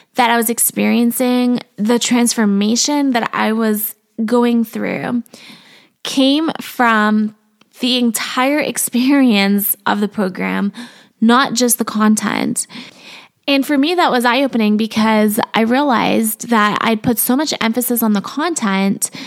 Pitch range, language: 215-250 Hz, English